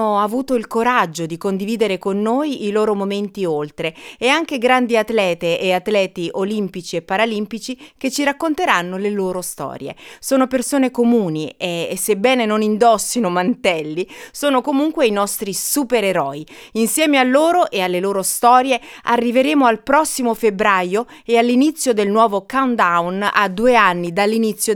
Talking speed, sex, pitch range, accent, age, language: 145 wpm, female, 180-240 Hz, native, 30-49, Italian